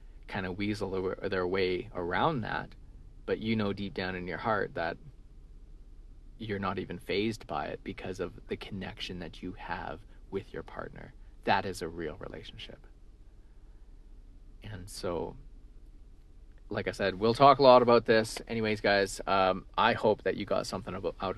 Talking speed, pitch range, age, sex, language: 165 wpm, 90-105 Hz, 30-49, male, English